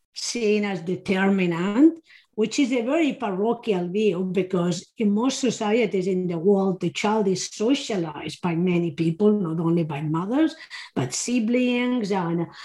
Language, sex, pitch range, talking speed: English, female, 185-250 Hz, 140 wpm